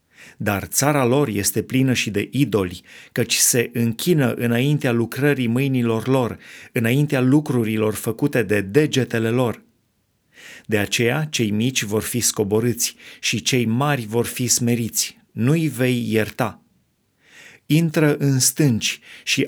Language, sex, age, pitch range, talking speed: Romanian, male, 30-49, 115-140 Hz, 125 wpm